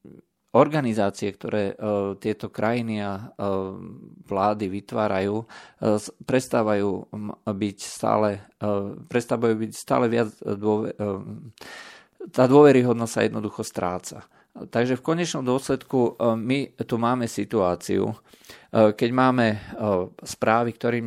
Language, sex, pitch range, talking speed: Slovak, male, 105-120 Hz, 90 wpm